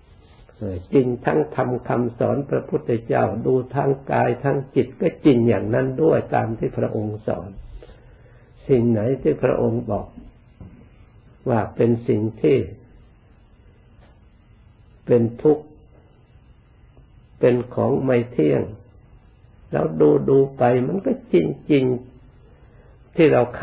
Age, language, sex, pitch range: 60-79, Thai, male, 105-130 Hz